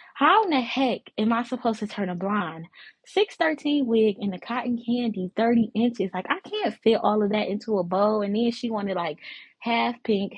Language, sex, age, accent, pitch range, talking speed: English, female, 20-39, American, 185-250 Hz, 210 wpm